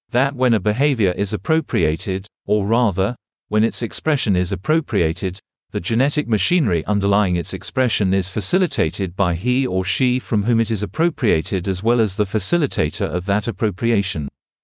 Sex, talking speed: male, 155 wpm